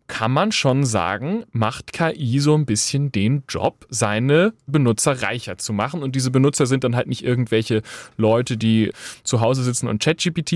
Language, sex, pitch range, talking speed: German, male, 120-165 Hz, 175 wpm